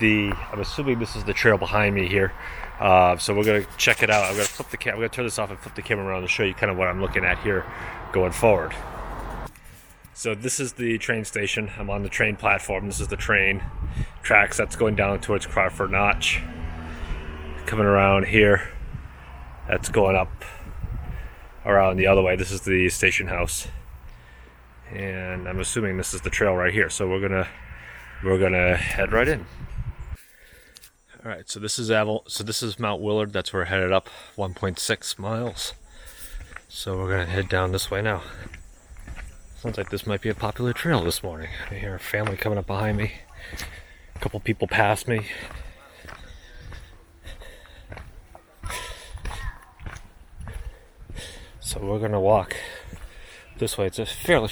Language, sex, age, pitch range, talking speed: English, male, 30-49, 85-105 Hz, 175 wpm